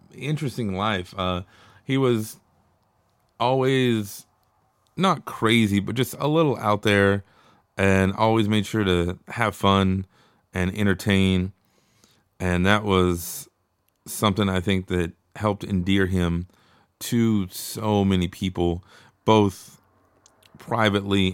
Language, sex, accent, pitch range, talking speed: English, male, American, 95-110 Hz, 110 wpm